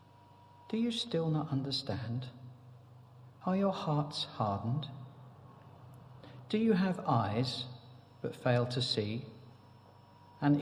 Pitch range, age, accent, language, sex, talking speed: 115-145 Hz, 50-69, British, English, male, 100 wpm